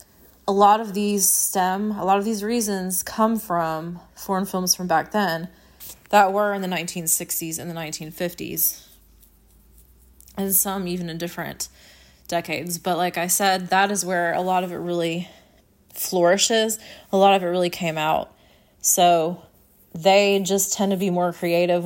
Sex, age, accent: female, 20-39, American